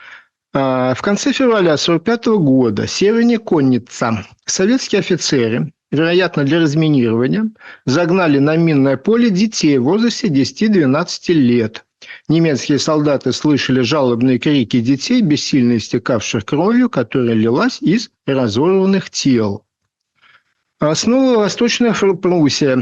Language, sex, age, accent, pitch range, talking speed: Russian, male, 50-69, native, 135-205 Hz, 105 wpm